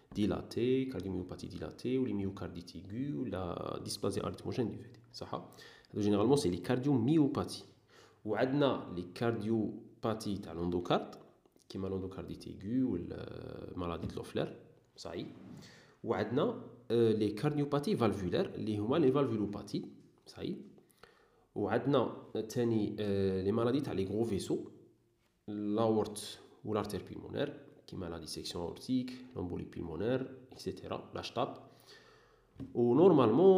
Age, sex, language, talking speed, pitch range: 40-59, male, Arabic, 120 wpm, 95-120 Hz